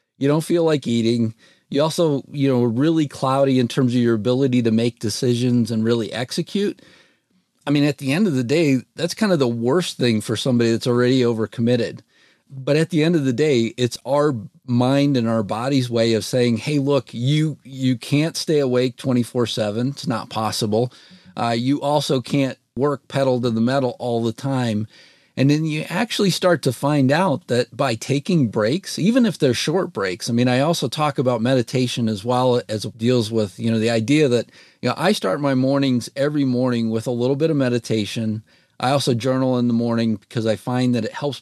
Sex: male